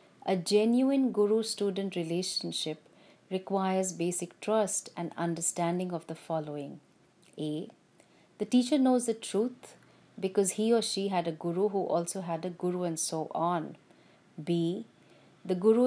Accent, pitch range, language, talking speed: Indian, 170-205 Hz, English, 135 wpm